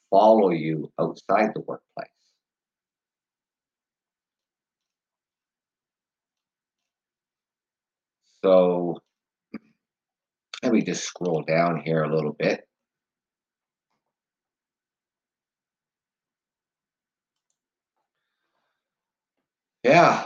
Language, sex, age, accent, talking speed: English, male, 60-79, American, 45 wpm